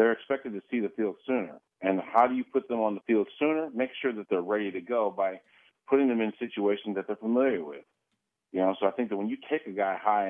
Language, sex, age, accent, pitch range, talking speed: English, male, 40-59, American, 100-130 Hz, 260 wpm